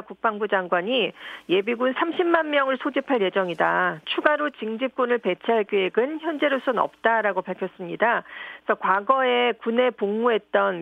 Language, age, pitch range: Korean, 40-59, 195-265 Hz